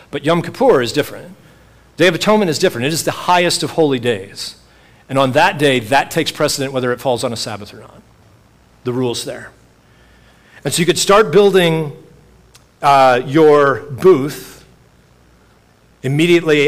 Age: 40-59